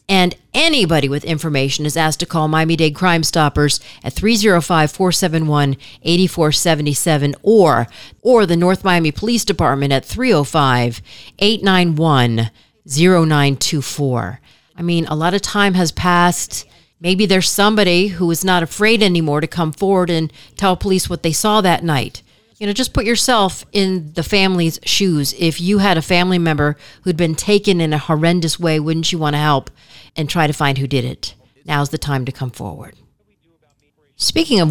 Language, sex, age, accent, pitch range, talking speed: English, female, 40-59, American, 150-200 Hz, 155 wpm